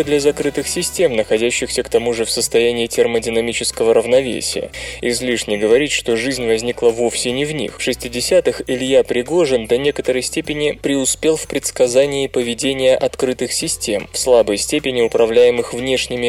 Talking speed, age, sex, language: 140 wpm, 20-39, male, Russian